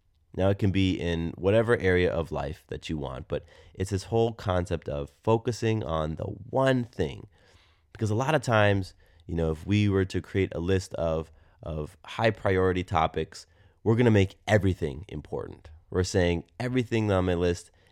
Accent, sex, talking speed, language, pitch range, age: American, male, 180 wpm, English, 85-100 Hz, 30-49